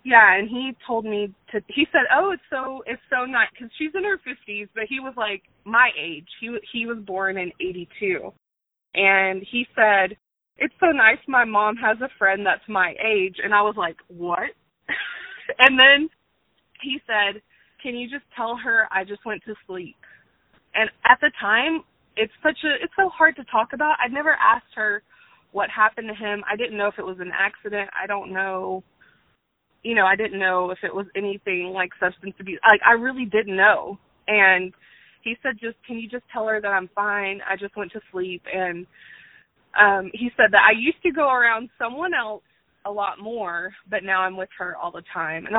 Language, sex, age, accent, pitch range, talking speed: English, female, 20-39, American, 195-260 Hz, 205 wpm